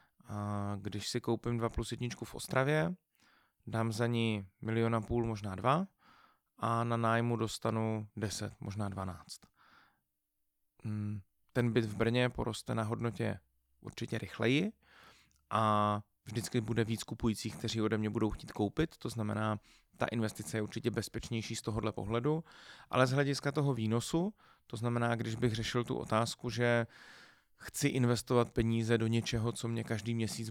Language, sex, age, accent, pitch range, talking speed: Czech, male, 30-49, native, 105-120 Hz, 145 wpm